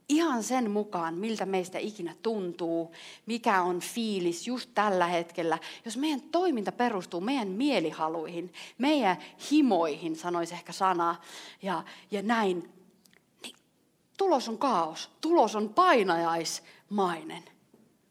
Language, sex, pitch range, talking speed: Finnish, female, 170-225 Hz, 115 wpm